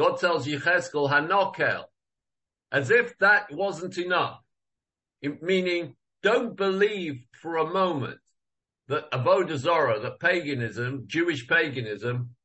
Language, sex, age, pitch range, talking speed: English, male, 50-69, 130-160 Hz, 110 wpm